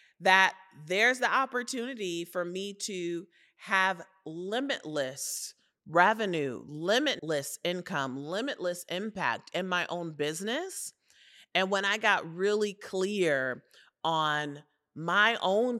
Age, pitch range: 30-49, 155-210 Hz